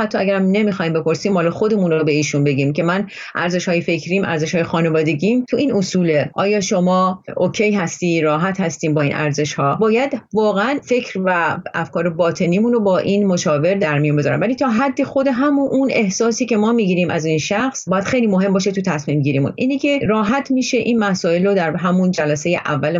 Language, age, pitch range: Persian, 30-49, 160-205 Hz